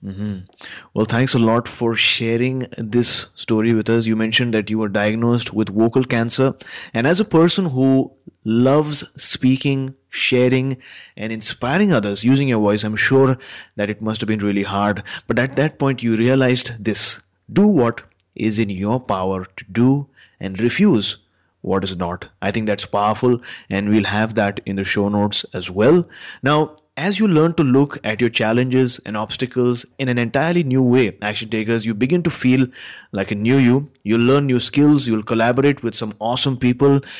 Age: 30-49